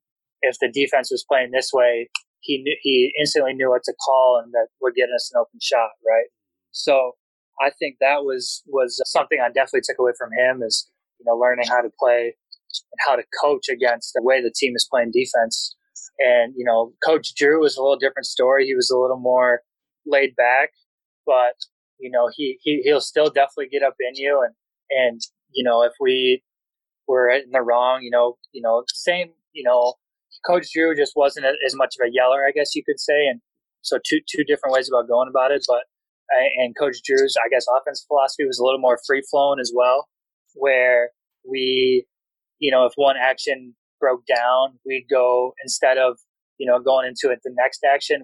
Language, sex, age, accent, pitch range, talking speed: English, male, 20-39, American, 125-200 Hz, 205 wpm